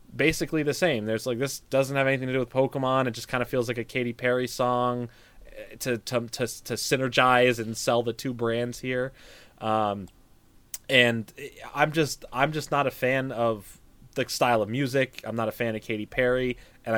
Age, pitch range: 20-39, 110-130 Hz